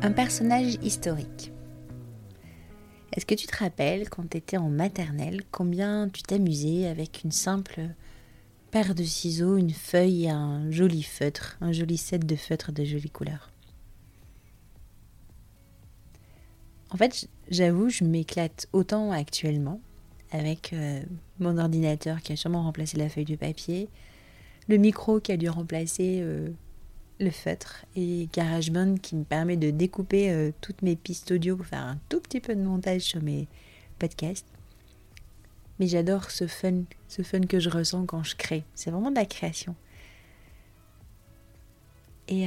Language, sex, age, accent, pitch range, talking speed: French, female, 30-49, French, 115-185 Hz, 145 wpm